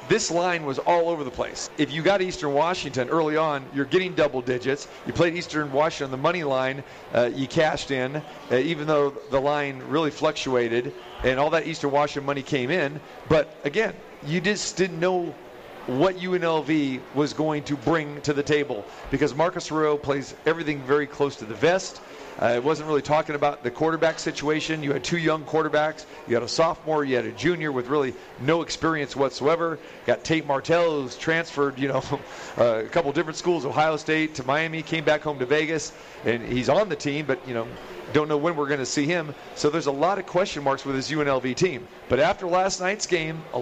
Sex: male